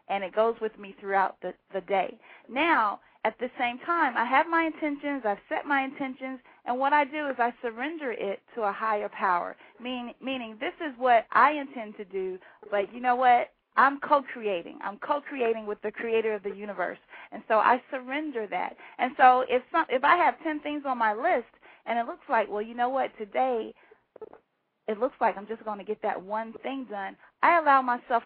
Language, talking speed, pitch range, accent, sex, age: English, 210 wpm, 215-280 Hz, American, female, 40-59